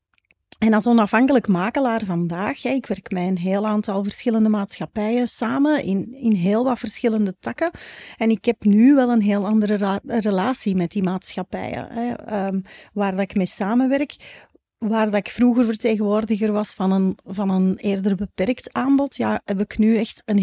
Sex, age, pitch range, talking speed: female, 30-49, 200-235 Hz, 175 wpm